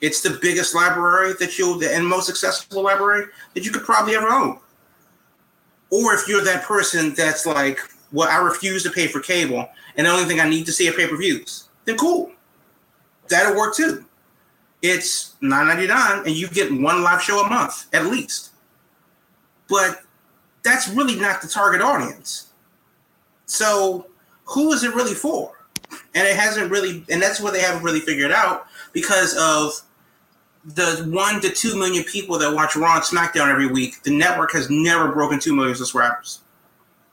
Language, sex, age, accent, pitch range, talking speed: English, male, 30-49, American, 150-200 Hz, 170 wpm